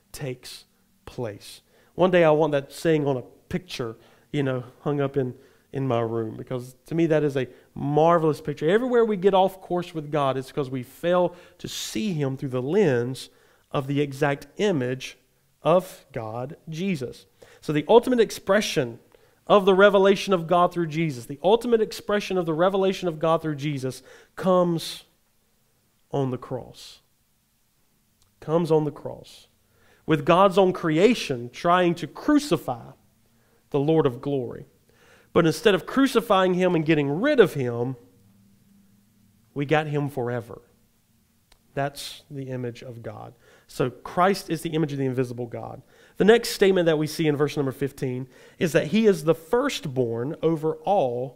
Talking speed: 160 wpm